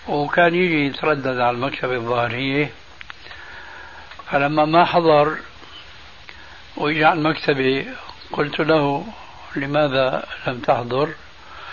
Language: Arabic